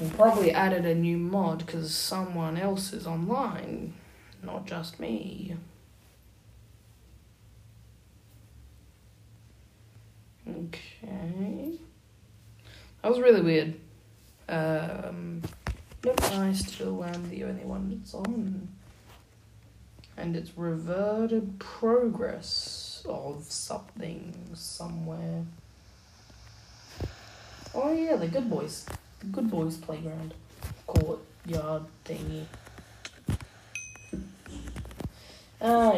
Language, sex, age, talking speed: English, female, 20-39, 80 wpm